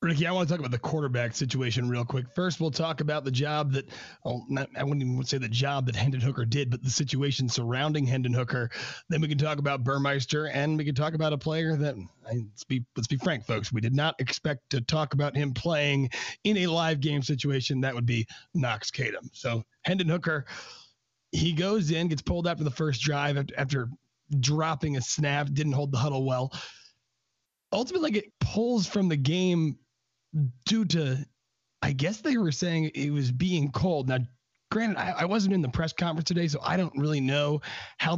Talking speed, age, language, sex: 205 wpm, 30-49, English, male